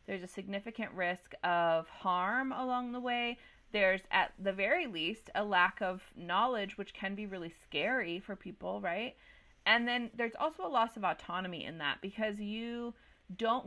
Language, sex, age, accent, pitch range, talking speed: English, female, 30-49, American, 185-245 Hz, 170 wpm